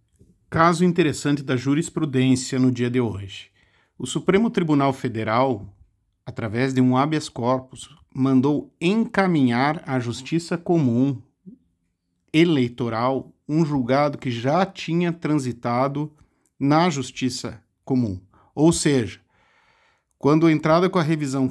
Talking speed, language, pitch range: 110 wpm, Portuguese, 120-155 Hz